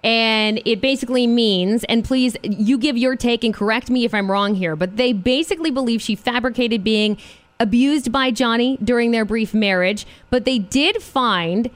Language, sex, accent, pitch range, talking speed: English, female, American, 200-250 Hz, 180 wpm